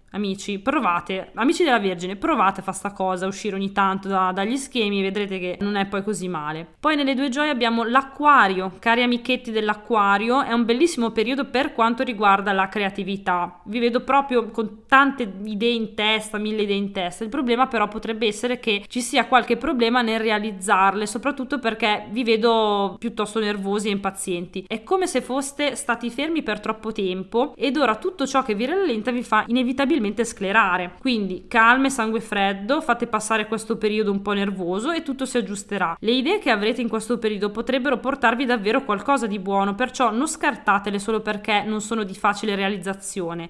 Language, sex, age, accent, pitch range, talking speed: Italian, female, 20-39, native, 200-250 Hz, 180 wpm